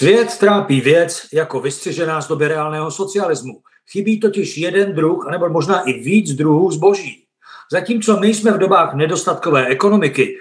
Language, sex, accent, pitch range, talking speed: Czech, male, native, 150-195 Hz, 150 wpm